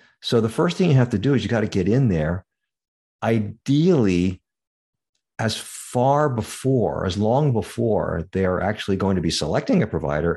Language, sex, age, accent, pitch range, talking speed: English, male, 50-69, American, 85-115 Hz, 180 wpm